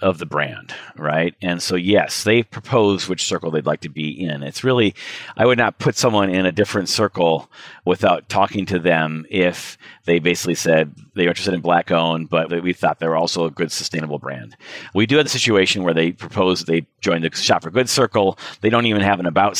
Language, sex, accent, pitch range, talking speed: English, male, American, 85-115 Hz, 215 wpm